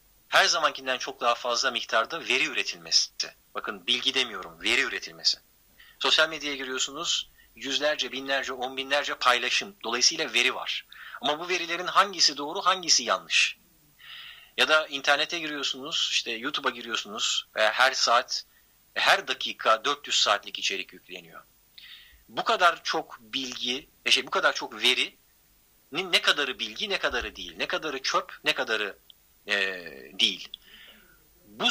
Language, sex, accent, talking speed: Turkish, male, native, 130 wpm